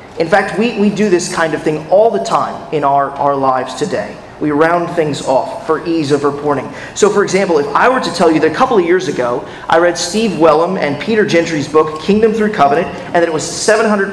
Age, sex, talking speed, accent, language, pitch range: 30-49, male, 240 wpm, American, English, 160-225 Hz